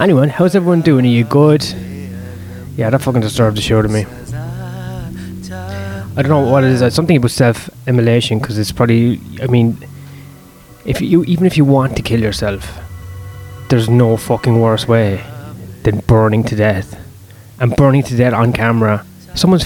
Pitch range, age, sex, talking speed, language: 105-140 Hz, 20-39, male, 170 wpm, English